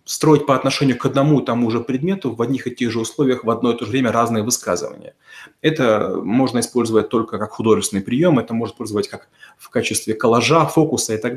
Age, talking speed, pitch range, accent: 30-49, 210 wpm, 115-145 Hz, native